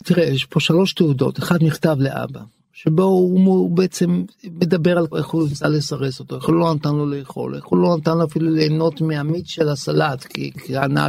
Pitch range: 155-195 Hz